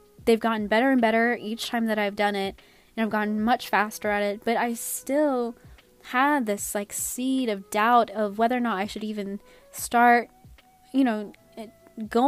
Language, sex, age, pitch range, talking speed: English, female, 10-29, 205-240 Hz, 185 wpm